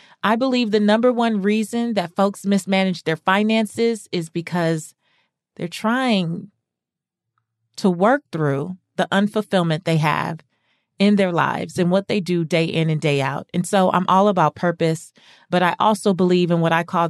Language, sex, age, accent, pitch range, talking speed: English, female, 30-49, American, 170-215 Hz, 170 wpm